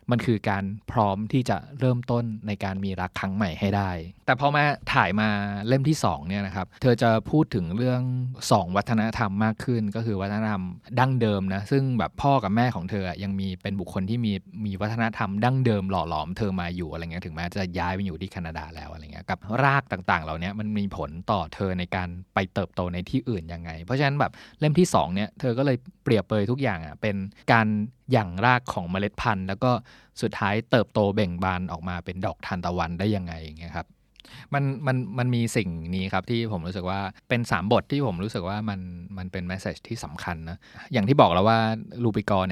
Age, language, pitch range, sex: 20-39, Thai, 95-120 Hz, male